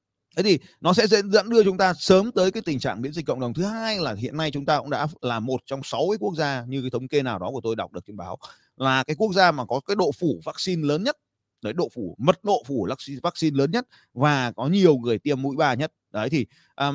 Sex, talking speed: male, 270 wpm